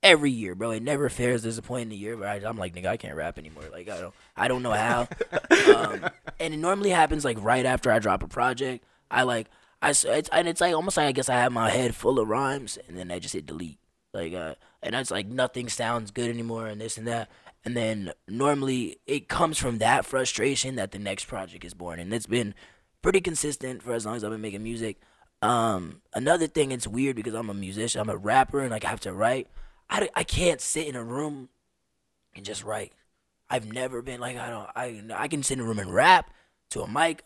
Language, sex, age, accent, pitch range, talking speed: English, male, 20-39, American, 105-135 Hz, 240 wpm